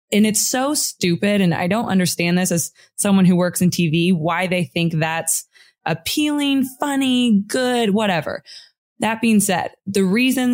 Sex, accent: female, American